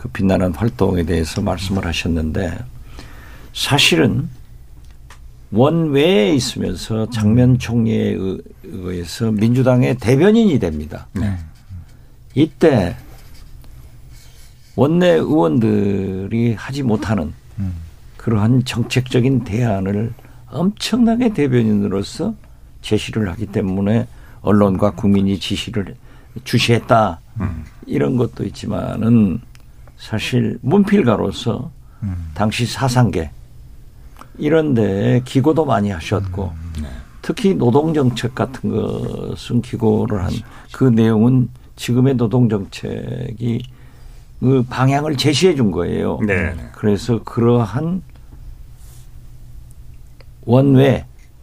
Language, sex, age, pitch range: Korean, male, 50-69, 100-125 Hz